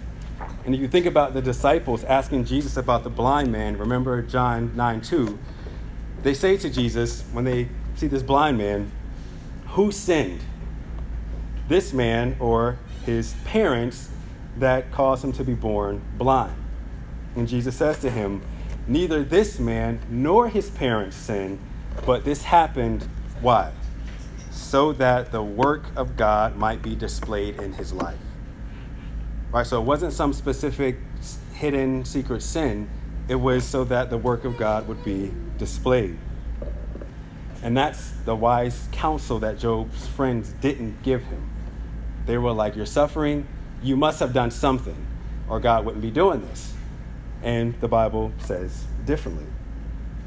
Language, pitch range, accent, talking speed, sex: English, 110-135 Hz, American, 145 wpm, male